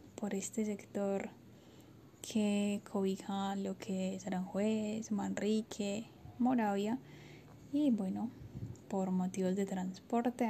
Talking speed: 95 wpm